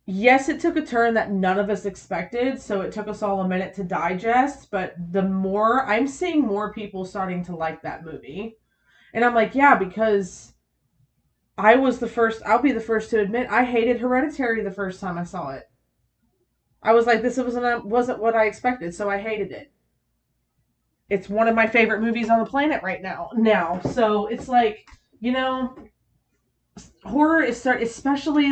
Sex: female